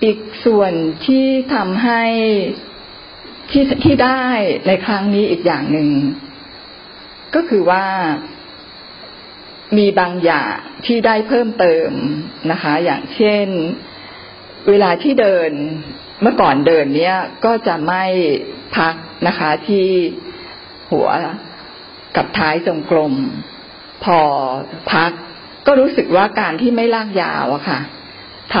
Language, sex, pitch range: Thai, female, 165-250 Hz